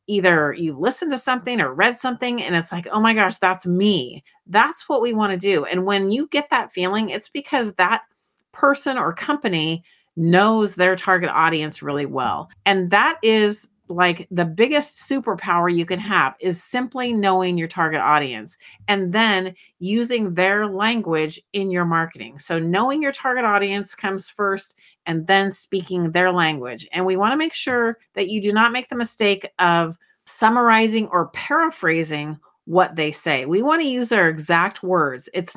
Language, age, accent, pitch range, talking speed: English, 40-59, American, 170-220 Hz, 175 wpm